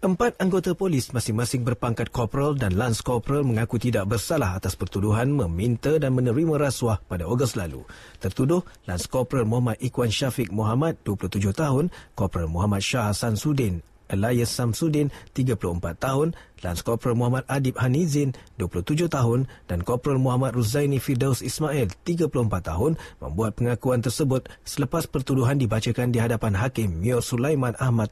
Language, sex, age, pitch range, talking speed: English, male, 40-59, 105-135 Hz, 140 wpm